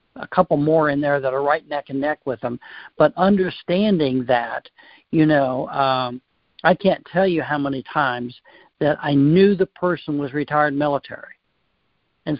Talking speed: 170 wpm